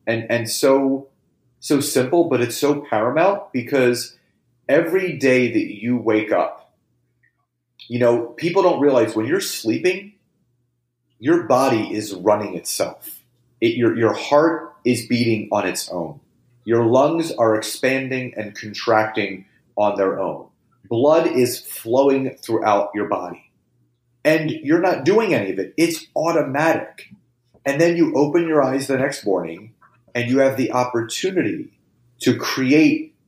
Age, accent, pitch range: 30-49, American, 115-150 Hz